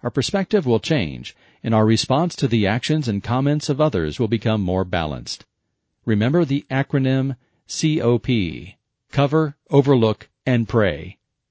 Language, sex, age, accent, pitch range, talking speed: English, male, 40-59, American, 105-140 Hz, 135 wpm